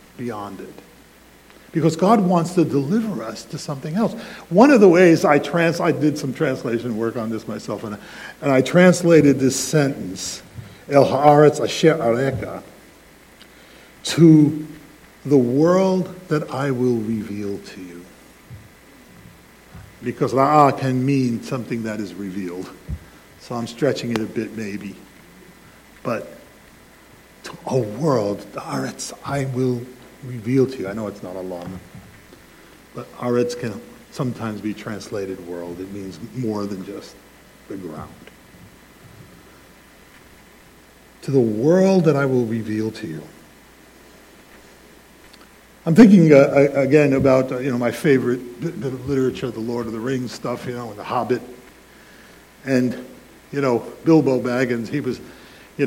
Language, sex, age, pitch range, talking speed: English, male, 60-79, 110-145 Hz, 135 wpm